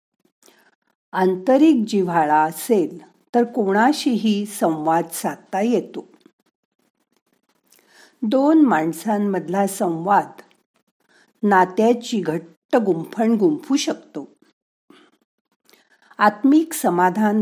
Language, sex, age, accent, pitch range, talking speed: Marathi, female, 50-69, native, 180-260 Hz, 40 wpm